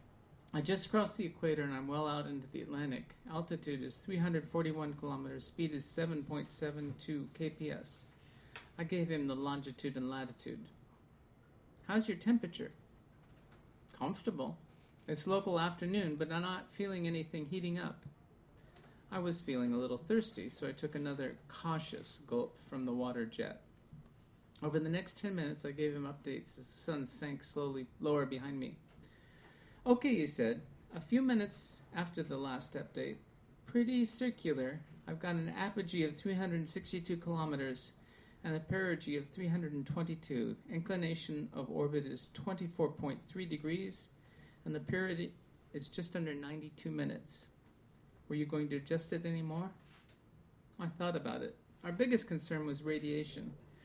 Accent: American